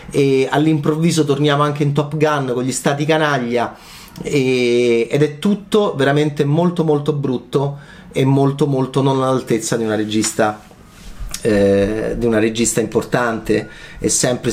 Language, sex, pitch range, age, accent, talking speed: Italian, male, 125-200 Hz, 30-49, native, 135 wpm